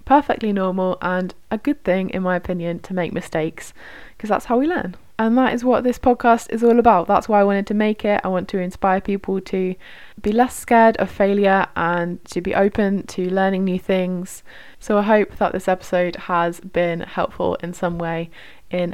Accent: British